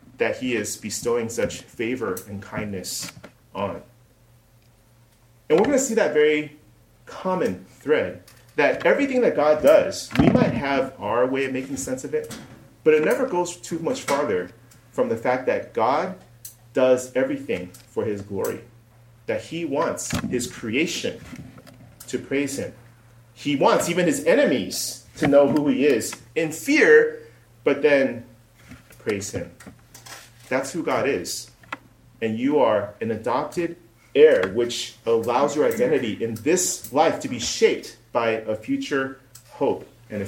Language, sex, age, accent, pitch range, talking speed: English, male, 30-49, American, 115-155 Hz, 150 wpm